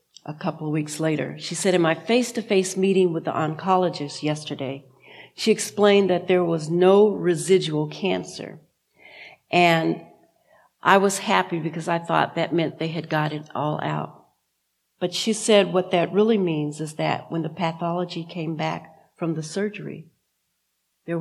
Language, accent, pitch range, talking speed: English, American, 160-190 Hz, 160 wpm